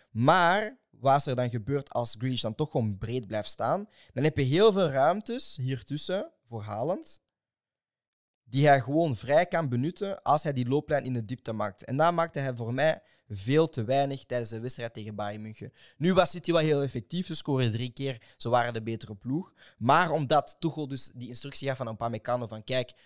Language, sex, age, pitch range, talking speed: Dutch, male, 20-39, 115-140 Hz, 210 wpm